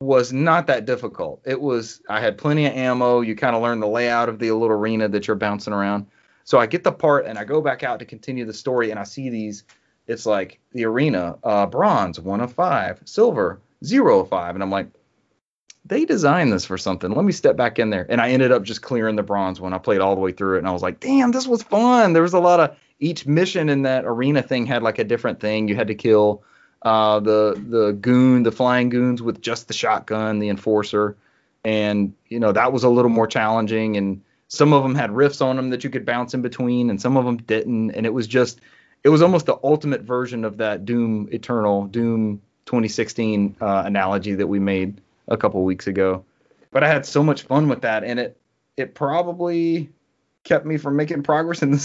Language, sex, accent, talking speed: English, male, American, 230 wpm